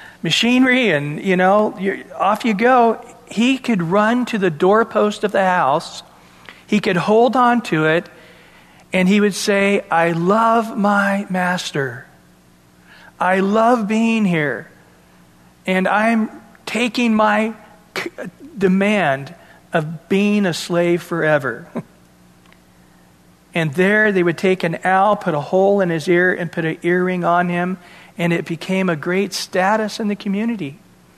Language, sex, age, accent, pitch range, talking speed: English, male, 40-59, American, 160-200 Hz, 140 wpm